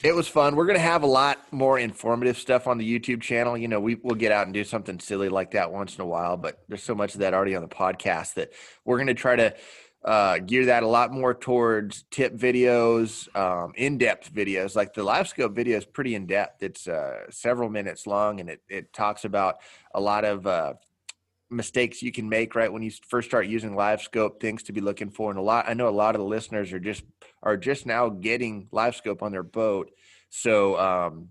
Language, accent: English, American